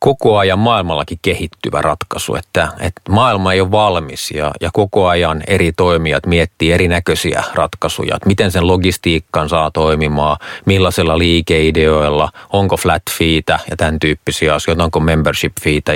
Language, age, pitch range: Finnish, 30-49, 80-95 Hz